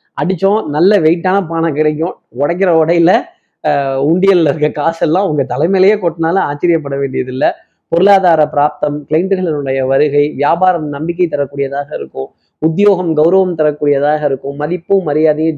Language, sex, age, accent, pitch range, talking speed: Tamil, male, 20-39, native, 145-190 Hz, 120 wpm